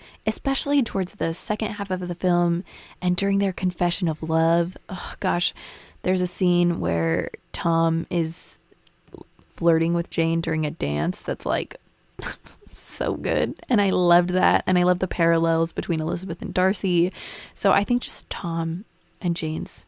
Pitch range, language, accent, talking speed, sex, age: 170-210 Hz, English, American, 155 wpm, female, 20-39